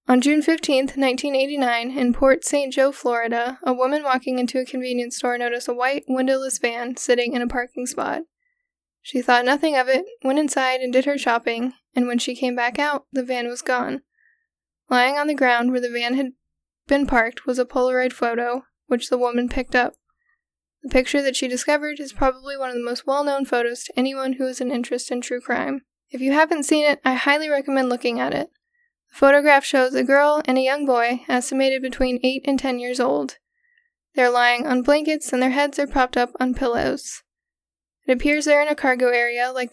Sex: female